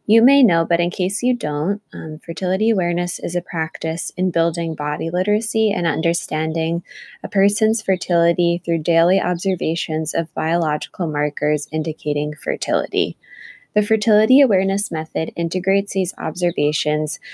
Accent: American